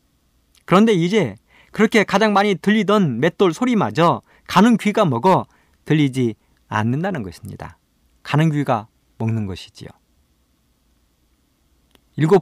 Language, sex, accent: Korean, male, native